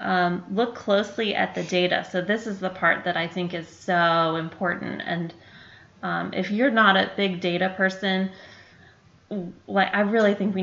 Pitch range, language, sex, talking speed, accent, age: 170-200 Hz, English, female, 175 wpm, American, 20-39